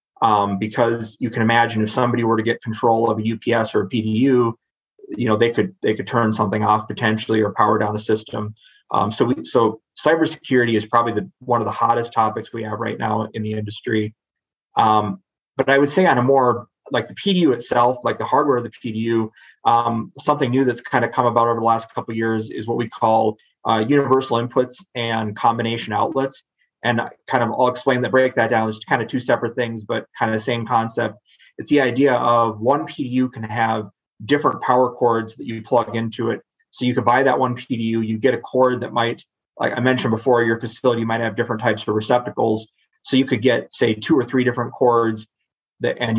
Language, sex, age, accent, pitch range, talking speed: English, male, 30-49, American, 110-125 Hz, 220 wpm